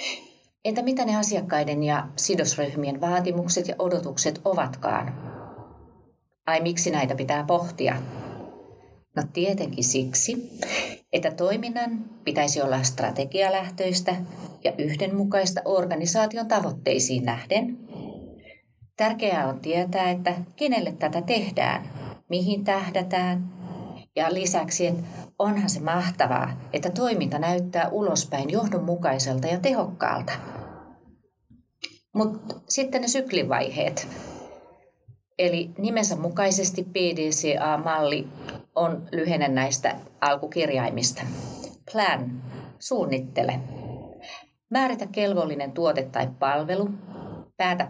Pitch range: 145-195 Hz